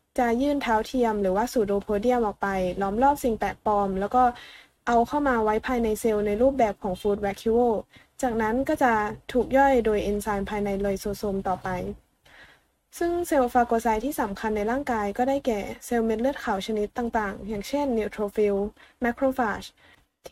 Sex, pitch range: female, 205-250 Hz